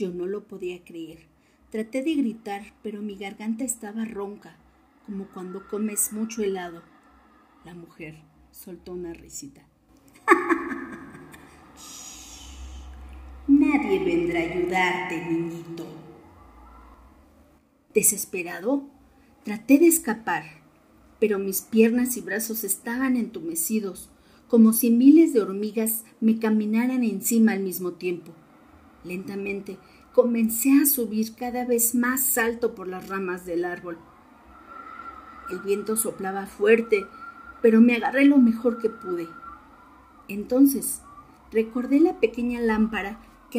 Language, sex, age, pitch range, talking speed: Spanish, female, 40-59, 185-255 Hz, 110 wpm